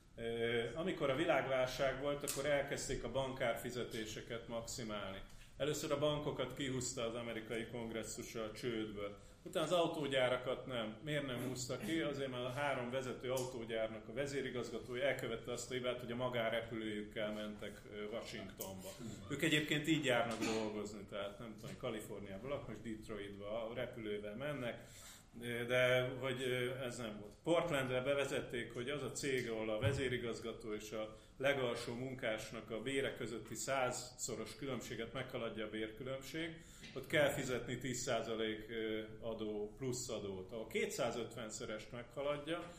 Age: 30-49